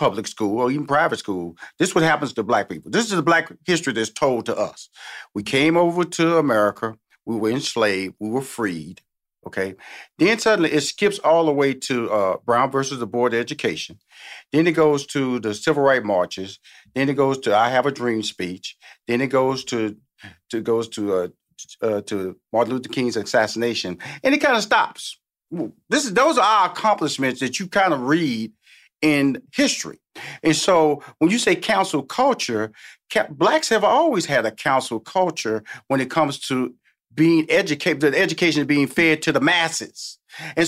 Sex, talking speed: male, 185 wpm